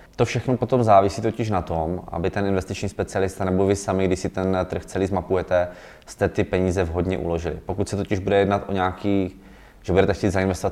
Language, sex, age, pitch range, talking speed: Czech, male, 20-39, 85-95 Hz, 200 wpm